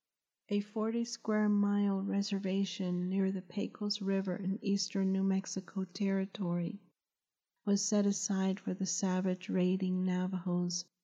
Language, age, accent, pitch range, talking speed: English, 50-69, American, 180-200 Hz, 110 wpm